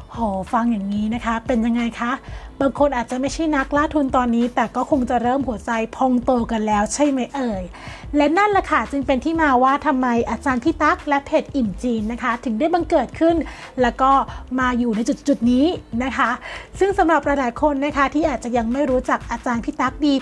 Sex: female